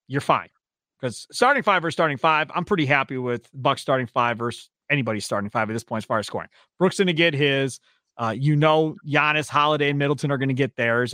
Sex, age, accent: male, 30-49, American